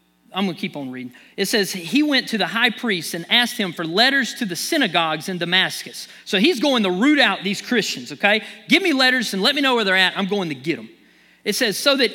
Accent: American